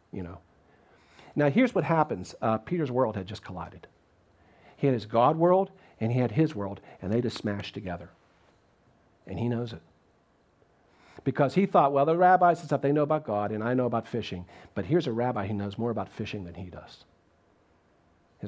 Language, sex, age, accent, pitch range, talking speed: English, male, 50-69, American, 105-145 Hz, 200 wpm